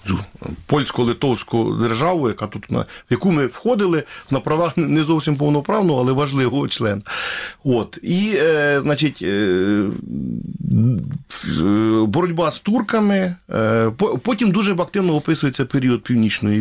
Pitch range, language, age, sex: 120-180 Hz, Ukrainian, 40-59, male